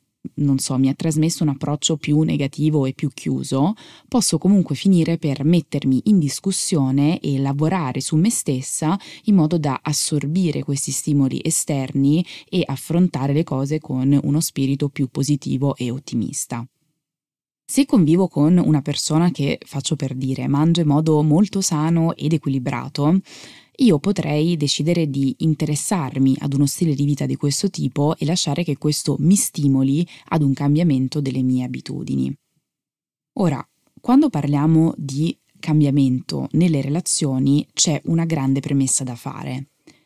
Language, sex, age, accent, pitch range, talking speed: Italian, female, 20-39, native, 140-165 Hz, 145 wpm